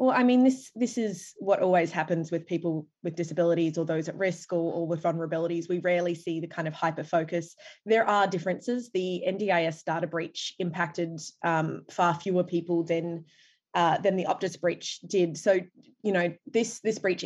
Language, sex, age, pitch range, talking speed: English, female, 20-39, 170-190 Hz, 190 wpm